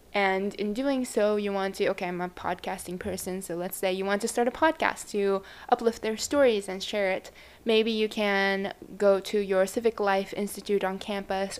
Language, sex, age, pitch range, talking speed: English, female, 20-39, 195-230 Hz, 200 wpm